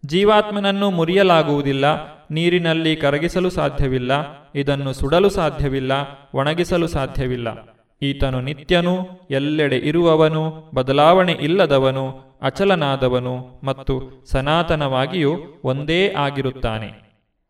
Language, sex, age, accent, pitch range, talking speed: Kannada, male, 30-49, native, 135-170 Hz, 70 wpm